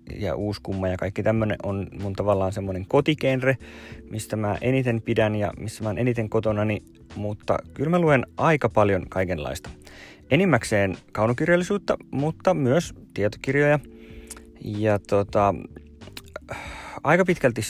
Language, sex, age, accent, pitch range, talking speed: Finnish, male, 30-49, native, 90-115 Hz, 120 wpm